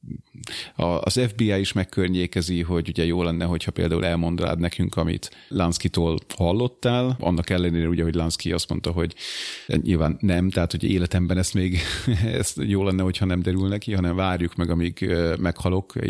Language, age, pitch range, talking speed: Hungarian, 30-49, 90-105 Hz, 155 wpm